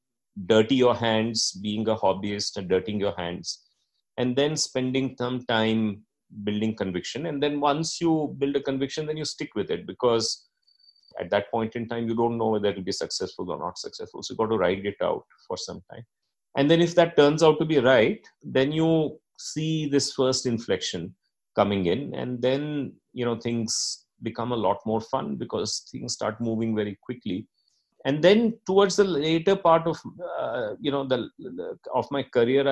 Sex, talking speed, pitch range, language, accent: male, 185 wpm, 115-160 Hz, English, Indian